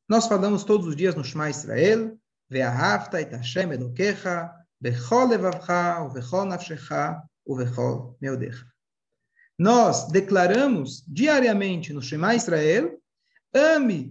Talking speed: 65 wpm